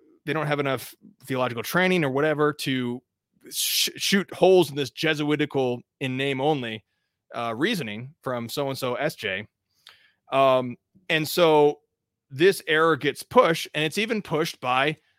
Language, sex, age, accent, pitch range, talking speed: English, male, 30-49, American, 135-175 Hz, 145 wpm